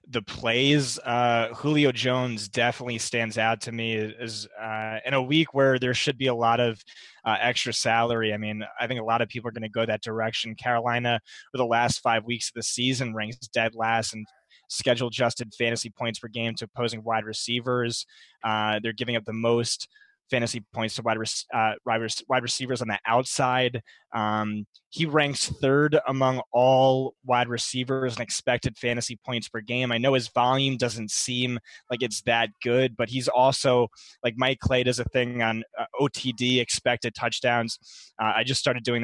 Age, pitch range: 20-39, 115-130 Hz